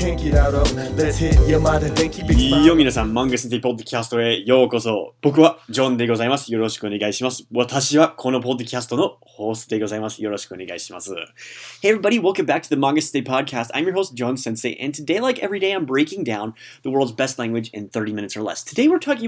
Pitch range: 115-160 Hz